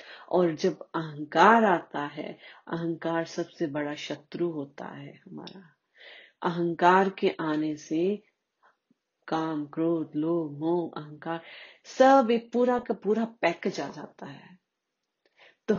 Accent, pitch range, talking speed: native, 160-205 Hz, 120 wpm